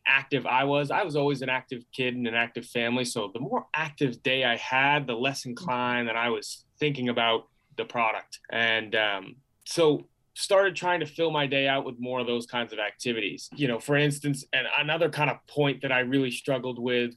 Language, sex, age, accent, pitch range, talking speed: English, male, 20-39, American, 120-145 Hz, 215 wpm